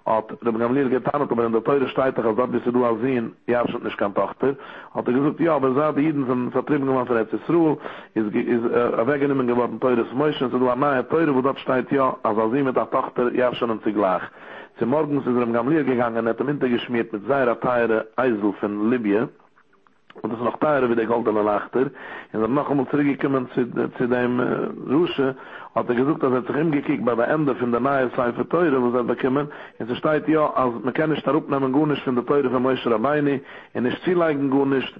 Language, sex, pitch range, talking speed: English, male, 120-140 Hz, 130 wpm